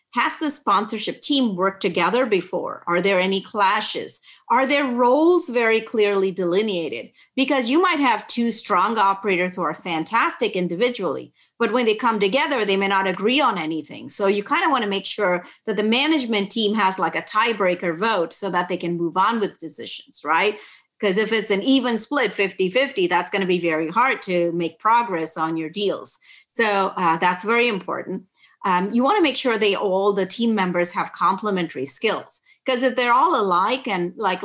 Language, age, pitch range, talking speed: English, 30-49, 180-235 Hz, 190 wpm